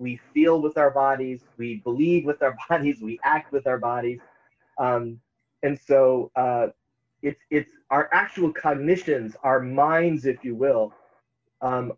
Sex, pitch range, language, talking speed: male, 125-160 Hz, English, 150 wpm